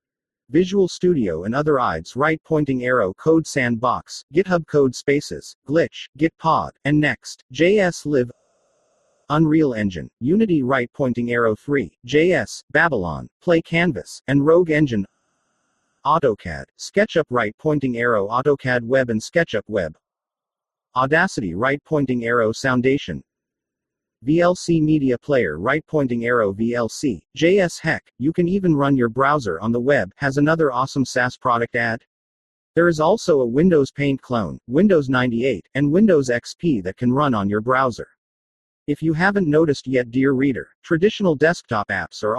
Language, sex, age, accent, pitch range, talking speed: English, male, 40-59, American, 120-160 Hz, 145 wpm